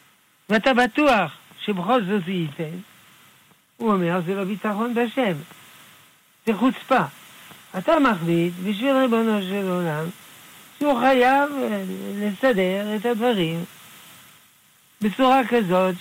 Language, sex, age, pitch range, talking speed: Hebrew, male, 60-79, 180-235 Hz, 105 wpm